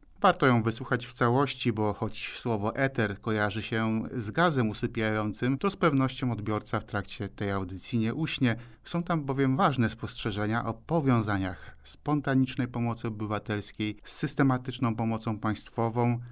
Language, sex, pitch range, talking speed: Polish, male, 110-130 Hz, 140 wpm